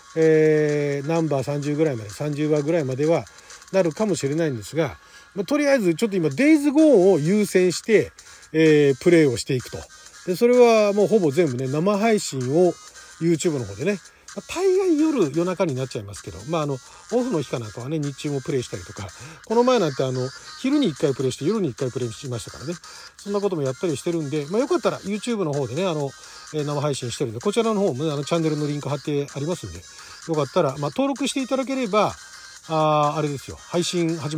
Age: 40-59